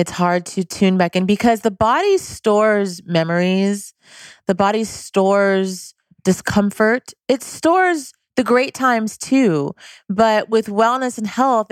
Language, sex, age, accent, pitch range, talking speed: English, female, 30-49, American, 165-215 Hz, 135 wpm